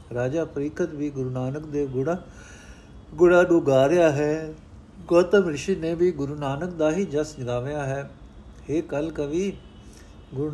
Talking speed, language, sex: 140 wpm, Punjabi, male